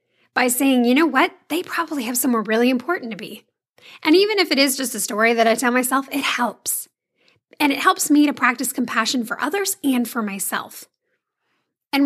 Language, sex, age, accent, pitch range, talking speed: English, female, 10-29, American, 225-295 Hz, 200 wpm